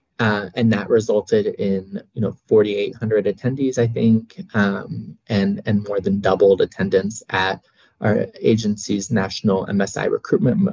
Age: 20-39